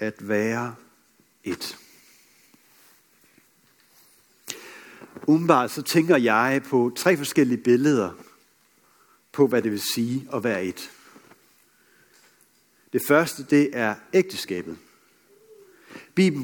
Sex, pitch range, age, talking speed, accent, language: male, 120-165 Hz, 60-79, 90 wpm, native, Danish